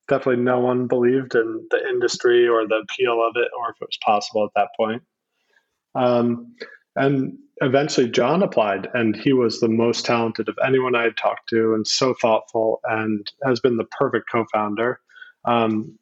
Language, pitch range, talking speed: English, 115-130 Hz, 175 wpm